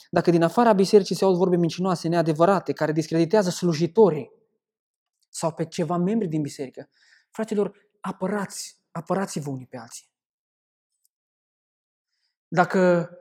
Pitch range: 160-200 Hz